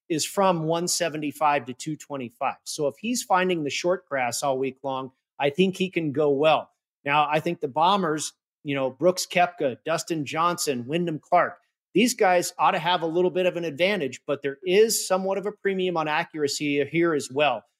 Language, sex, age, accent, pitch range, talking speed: English, male, 40-59, American, 145-180 Hz, 190 wpm